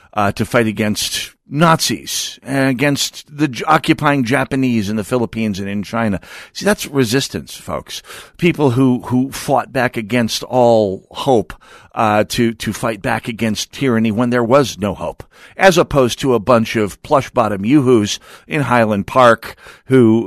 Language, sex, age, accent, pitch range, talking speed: English, male, 50-69, American, 105-135 Hz, 160 wpm